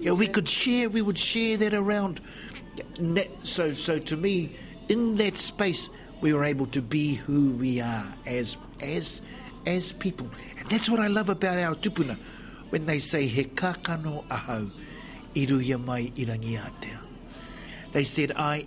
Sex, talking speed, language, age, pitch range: male, 140 wpm, English, 60-79, 125-175 Hz